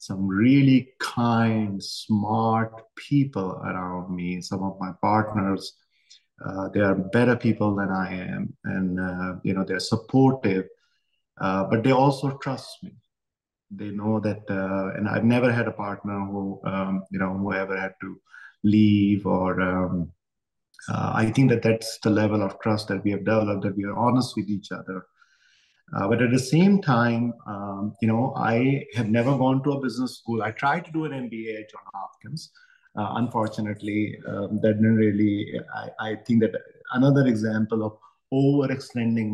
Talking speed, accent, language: 170 wpm, Indian, English